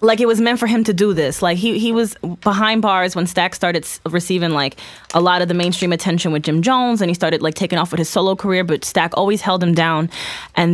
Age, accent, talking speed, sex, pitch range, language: 20-39, American, 265 wpm, female, 165-200 Hz, English